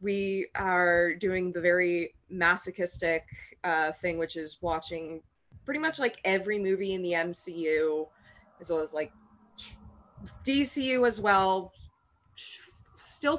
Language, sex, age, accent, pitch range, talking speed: English, female, 20-39, American, 155-200 Hz, 120 wpm